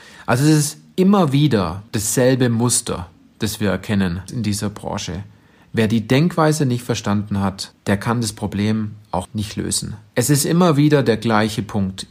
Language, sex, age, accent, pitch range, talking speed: German, male, 40-59, German, 105-135 Hz, 165 wpm